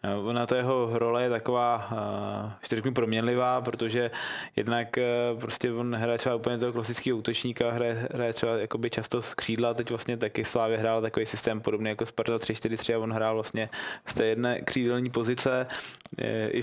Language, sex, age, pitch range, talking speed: Czech, male, 20-39, 110-120 Hz, 165 wpm